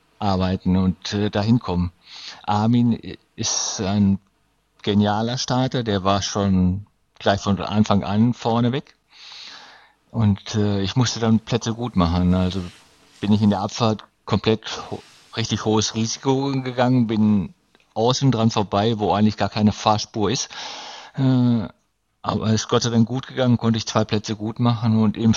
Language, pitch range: German, 105-120 Hz